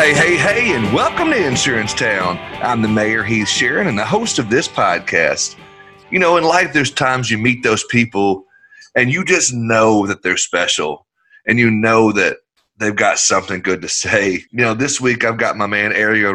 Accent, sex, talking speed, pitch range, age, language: American, male, 200 wpm, 95-125 Hz, 30-49, English